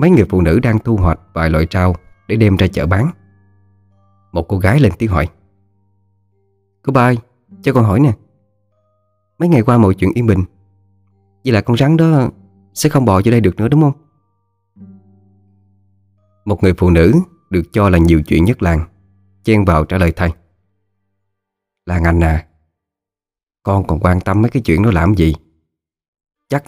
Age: 20-39